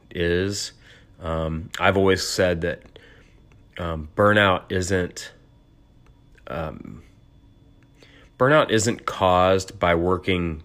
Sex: male